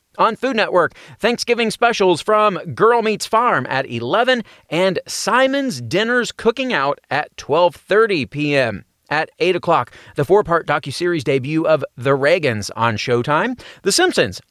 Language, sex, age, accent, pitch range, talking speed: English, male, 30-49, American, 140-225 Hz, 135 wpm